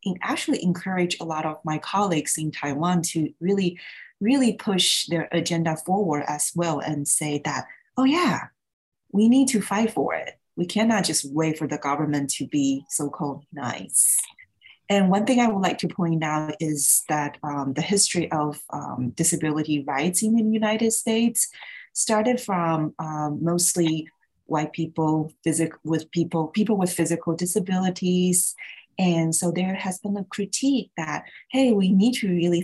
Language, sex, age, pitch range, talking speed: English, female, 30-49, 150-185 Hz, 160 wpm